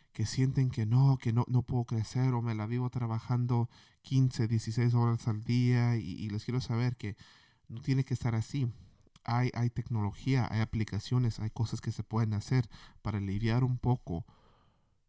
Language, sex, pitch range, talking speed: Spanish, male, 110-130 Hz, 180 wpm